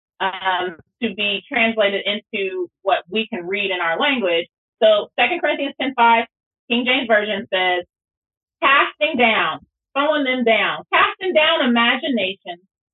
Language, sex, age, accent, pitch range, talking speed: English, female, 30-49, American, 195-255 Hz, 135 wpm